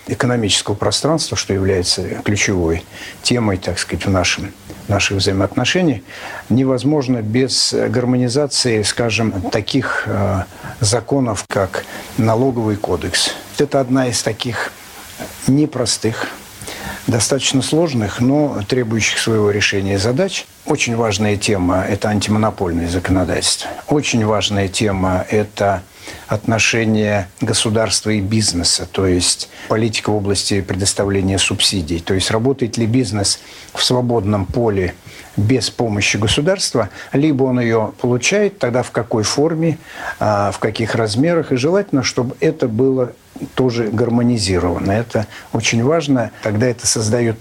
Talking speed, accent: 115 wpm, native